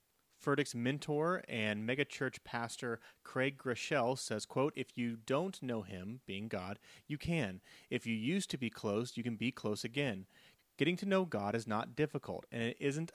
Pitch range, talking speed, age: 110-145 Hz, 180 wpm, 30-49